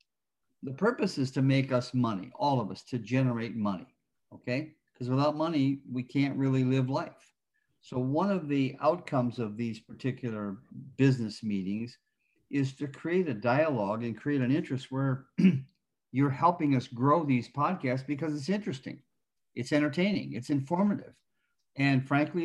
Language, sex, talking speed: English, male, 150 wpm